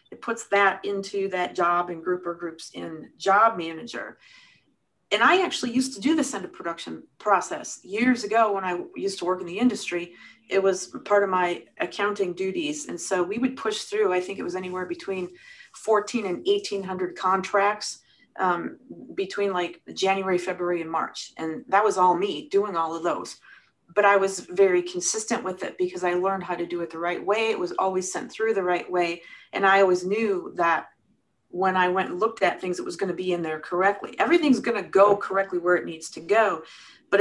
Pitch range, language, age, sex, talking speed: 180-215 Hz, English, 40-59, female, 205 wpm